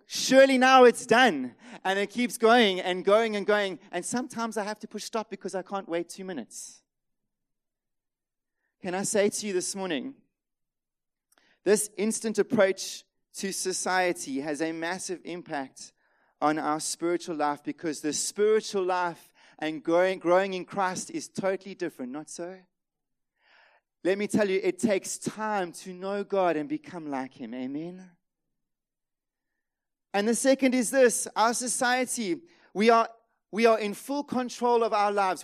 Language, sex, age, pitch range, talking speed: English, male, 30-49, 185-230 Hz, 155 wpm